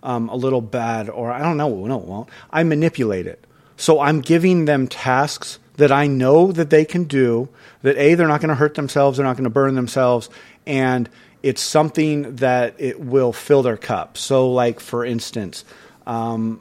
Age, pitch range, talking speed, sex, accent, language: 30-49, 120-150 Hz, 195 wpm, male, American, English